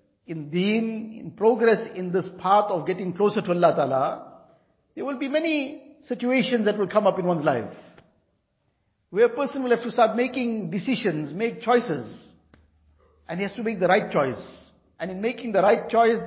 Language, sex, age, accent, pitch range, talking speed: English, male, 50-69, Indian, 175-225 Hz, 185 wpm